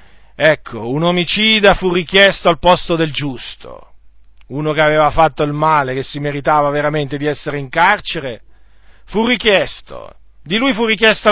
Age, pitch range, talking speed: 40-59, 145-185 Hz, 155 wpm